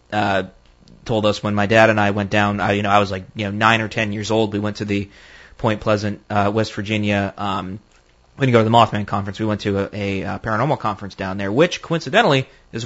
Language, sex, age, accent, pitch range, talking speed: English, male, 20-39, American, 105-130 Hz, 245 wpm